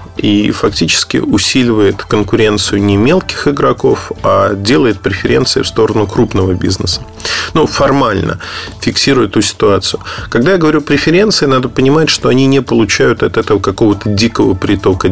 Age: 20-39